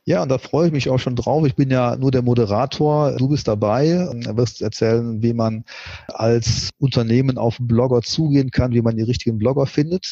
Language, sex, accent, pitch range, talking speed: German, male, German, 110-130 Hz, 210 wpm